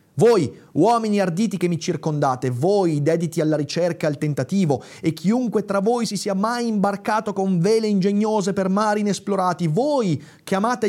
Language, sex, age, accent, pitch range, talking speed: Italian, male, 30-49, native, 130-185 Hz, 165 wpm